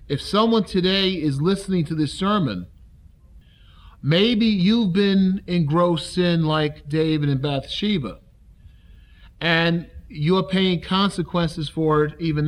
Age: 40-59